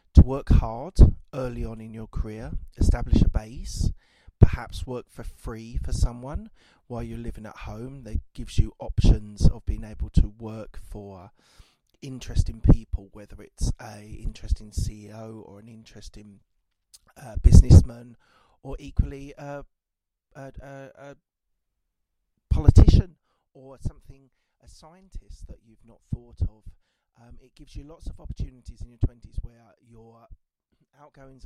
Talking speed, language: 135 wpm, English